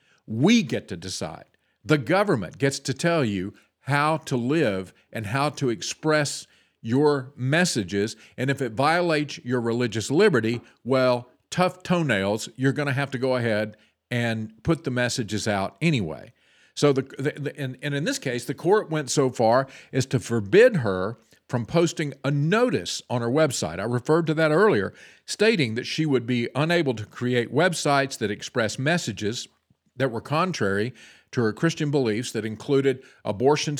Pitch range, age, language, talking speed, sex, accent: 110-145 Hz, 50-69, English, 165 wpm, male, American